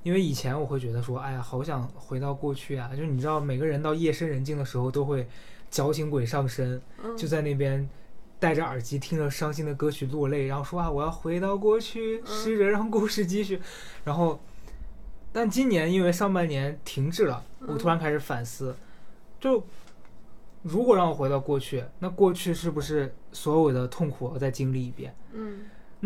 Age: 20-39